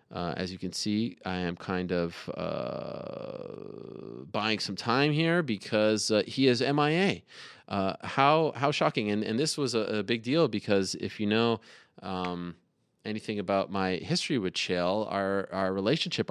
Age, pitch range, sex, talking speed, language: 30-49, 95-145 Hz, male, 165 wpm, English